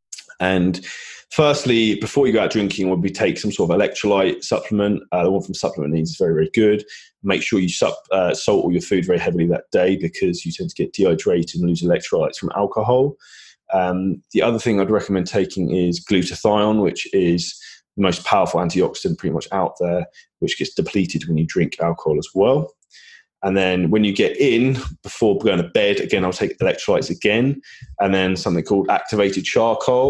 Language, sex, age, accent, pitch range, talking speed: English, male, 20-39, British, 85-110 Hz, 195 wpm